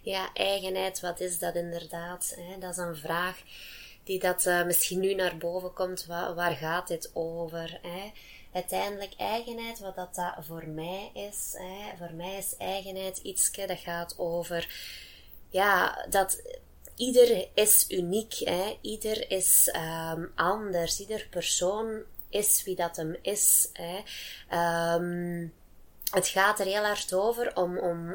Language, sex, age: Dutch, female, 20-39